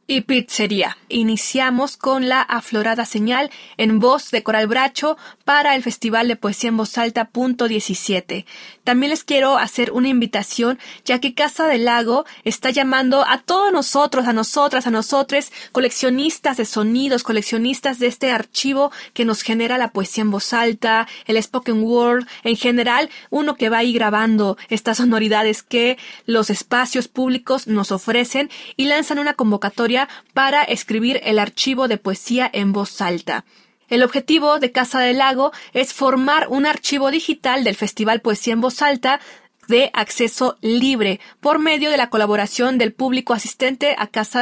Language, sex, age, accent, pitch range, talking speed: Spanish, female, 20-39, Mexican, 225-275 Hz, 160 wpm